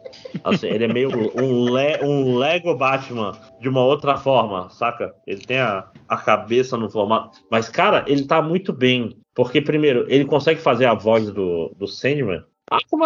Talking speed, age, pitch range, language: 180 wpm, 20-39, 110-145 Hz, Portuguese